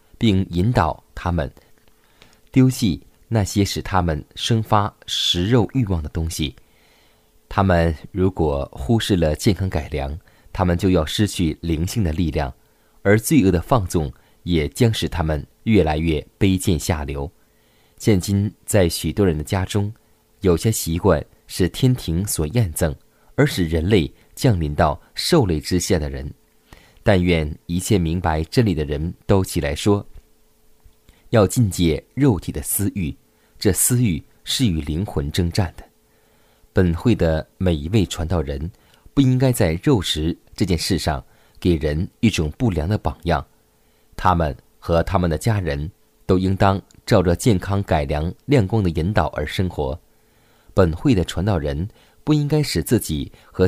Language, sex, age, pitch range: Chinese, male, 20-39, 80-110 Hz